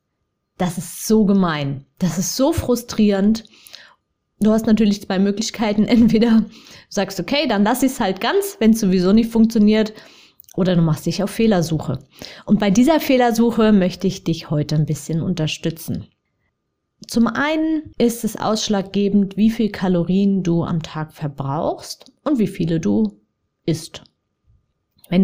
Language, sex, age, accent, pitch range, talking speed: German, female, 20-39, German, 170-225 Hz, 145 wpm